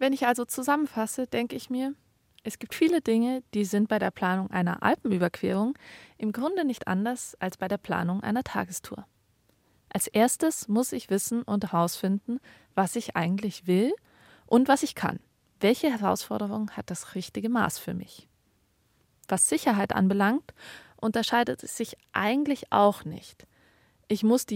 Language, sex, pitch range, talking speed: German, female, 190-245 Hz, 155 wpm